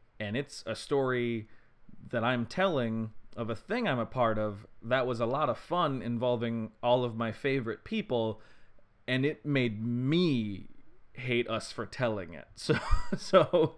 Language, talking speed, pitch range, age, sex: English, 160 wpm, 110-135 Hz, 30-49, male